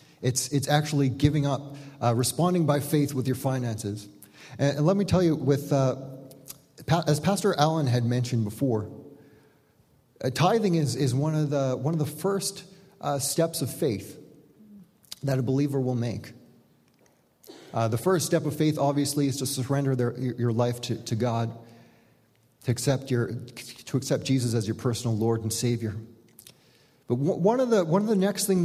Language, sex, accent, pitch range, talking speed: English, male, American, 120-155 Hz, 175 wpm